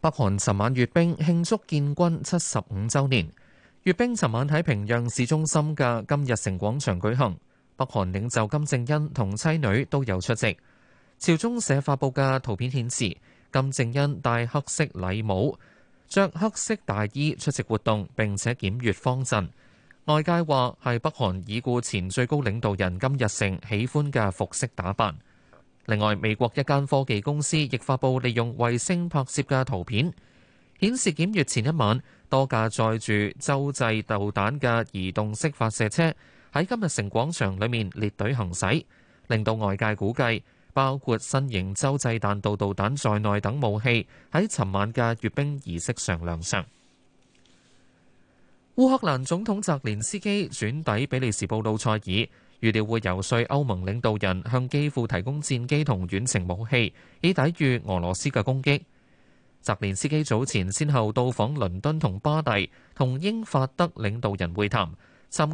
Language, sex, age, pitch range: Chinese, male, 20-39, 105-145 Hz